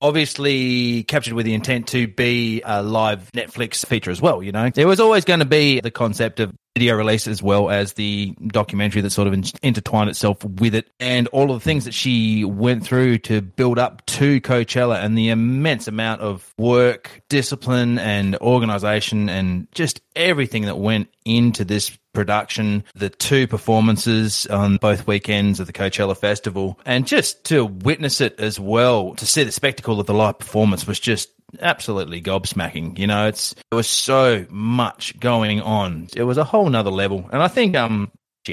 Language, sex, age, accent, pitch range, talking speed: English, male, 30-49, Australian, 105-120 Hz, 185 wpm